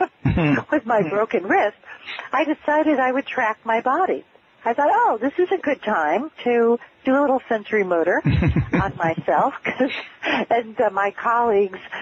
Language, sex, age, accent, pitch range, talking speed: English, female, 50-69, American, 180-215 Hz, 155 wpm